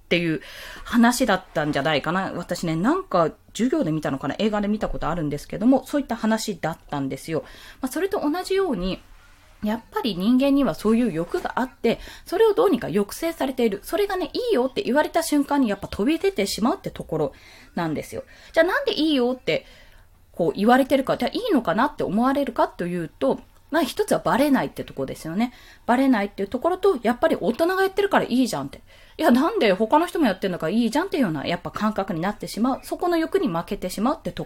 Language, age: Japanese, 20-39